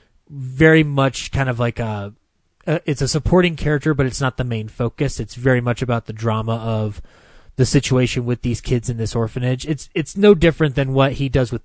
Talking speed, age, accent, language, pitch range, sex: 205 wpm, 20-39, American, English, 115-135 Hz, male